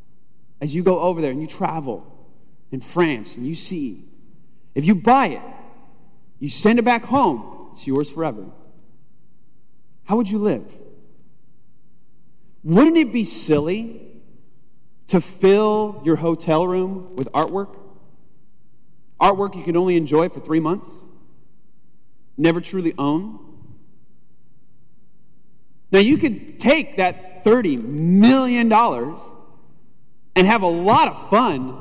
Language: English